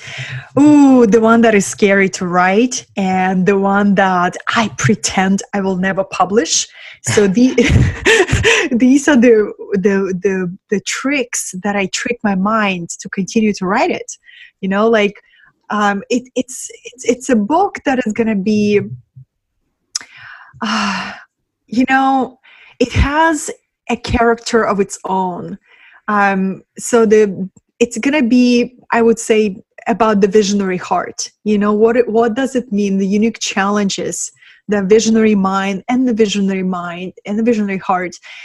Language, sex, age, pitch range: English, female, 20-39, 195-240 Hz